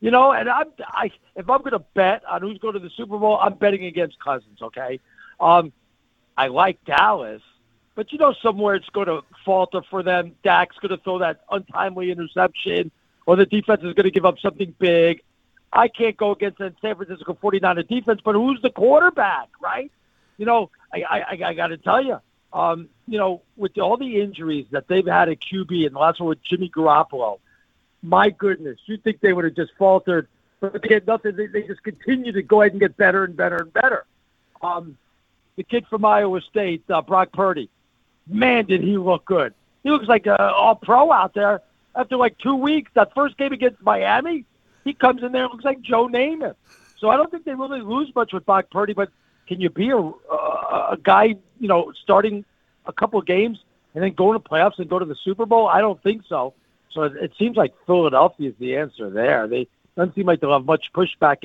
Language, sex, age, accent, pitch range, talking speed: English, male, 50-69, American, 175-220 Hz, 215 wpm